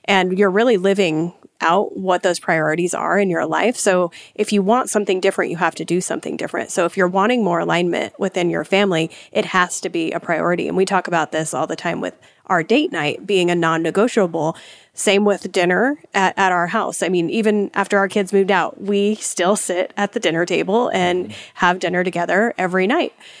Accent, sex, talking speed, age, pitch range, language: American, female, 210 wpm, 30-49, 180-210 Hz, English